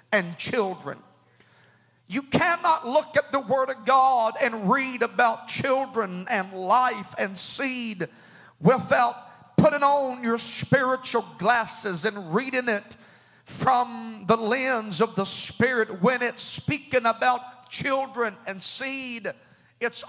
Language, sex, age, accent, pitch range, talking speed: English, male, 50-69, American, 220-275 Hz, 120 wpm